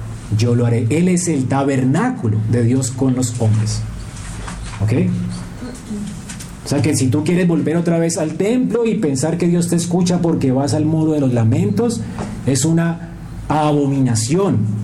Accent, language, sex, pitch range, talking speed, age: Colombian, Spanish, male, 120-195 Hz, 160 wpm, 40-59